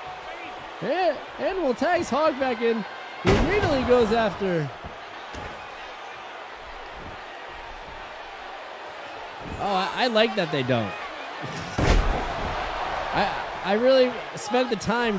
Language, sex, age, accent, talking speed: English, male, 20-39, American, 95 wpm